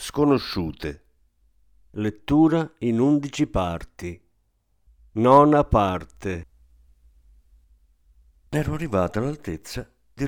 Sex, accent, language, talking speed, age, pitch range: male, native, Italian, 65 wpm, 50-69, 80-115 Hz